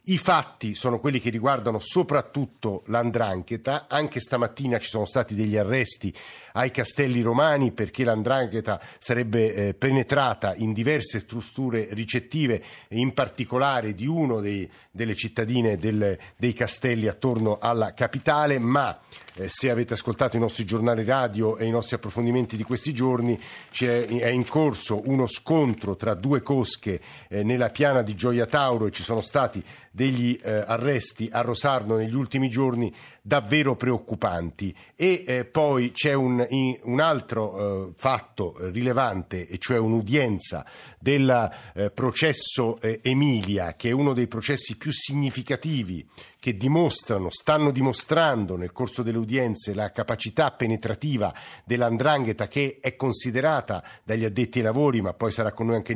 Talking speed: 145 wpm